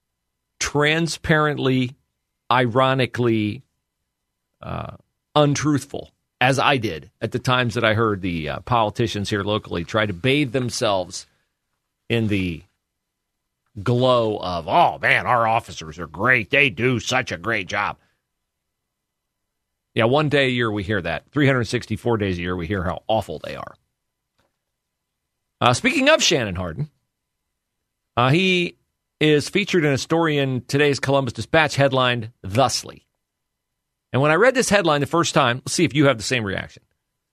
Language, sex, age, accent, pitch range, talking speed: English, male, 40-59, American, 110-165 Hz, 145 wpm